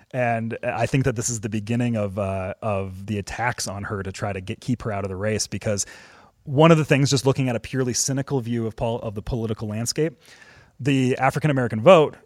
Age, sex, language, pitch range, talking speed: 30-49, male, English, 110-130 Hz, 230 wpm